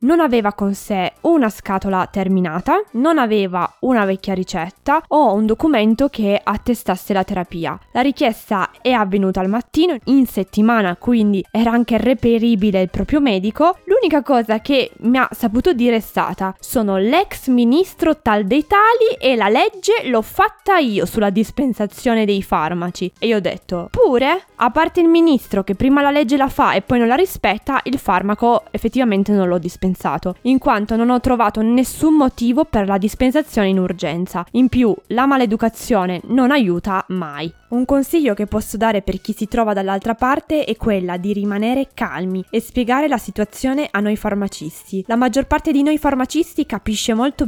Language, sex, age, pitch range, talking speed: Italian, female, 20-39, 195-260 Hz, 170 wpm